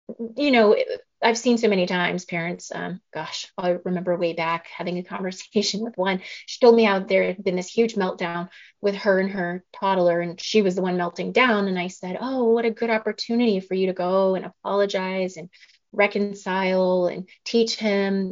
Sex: female